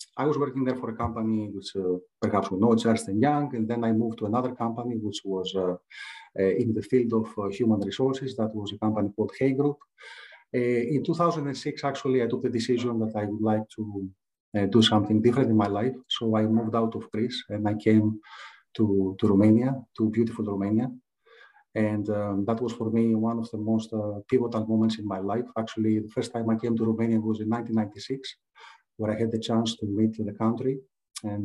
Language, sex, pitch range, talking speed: Romanian, male, 105-120 Hz, 215 wpm